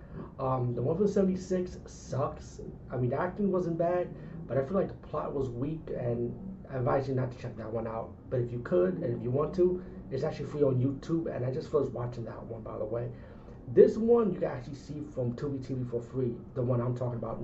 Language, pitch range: English, 120-150 Hz